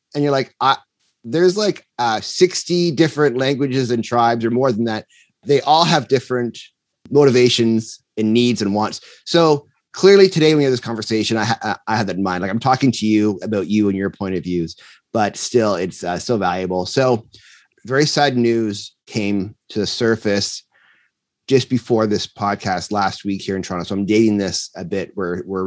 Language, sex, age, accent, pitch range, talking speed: English, male, 30-49, American, 100-130 Hz, 190 wpm